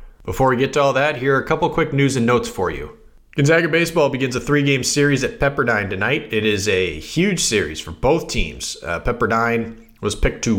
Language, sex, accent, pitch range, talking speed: English, male, American, 110-135 Hz, 215 wpm